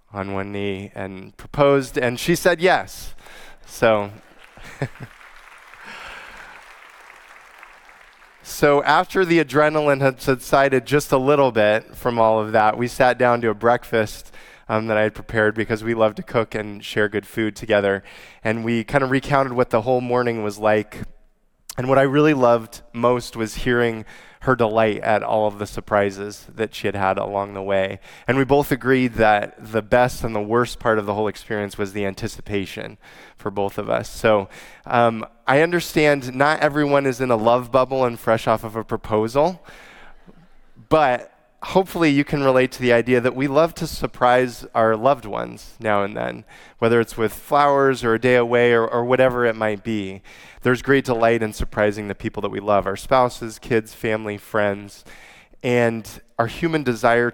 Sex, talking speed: male, 175 wpm